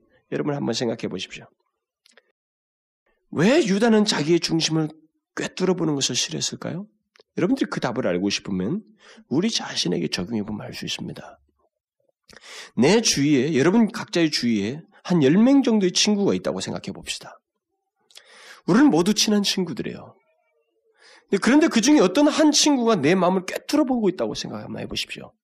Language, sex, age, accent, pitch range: Korean, male, 40-59, native, 165-265 Hz